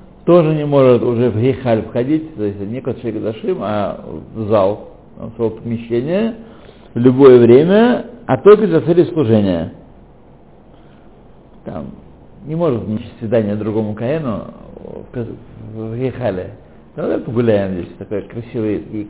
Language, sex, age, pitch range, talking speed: Russian, male, 60-79, 110-165 Hz, 125 wpm